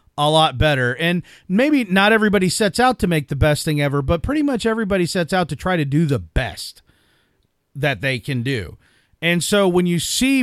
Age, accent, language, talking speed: 40-59, American, English, 205 wpm